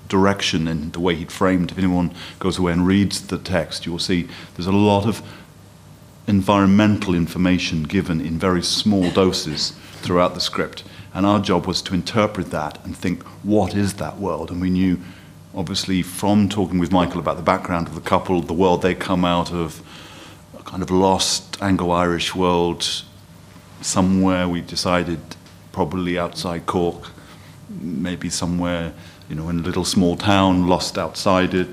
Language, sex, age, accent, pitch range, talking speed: English, male, 40-59, British, 85-95 Hz, 165 wpm